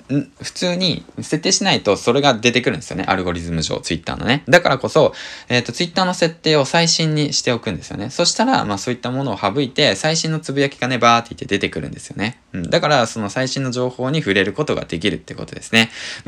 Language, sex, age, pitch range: Japanese, male, 20-39, 100-145 Hz